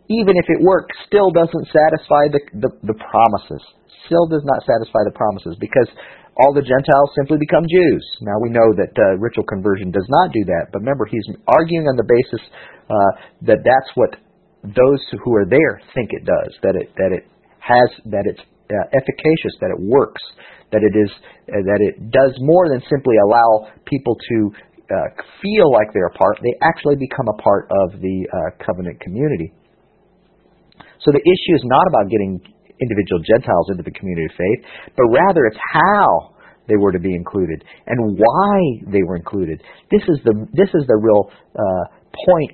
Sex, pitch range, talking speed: male, 105-150 Hz, 185 wpm